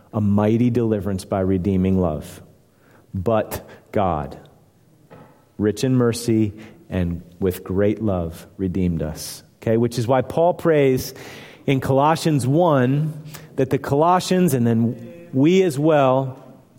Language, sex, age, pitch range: English, male, 40-59, 120-185 Hz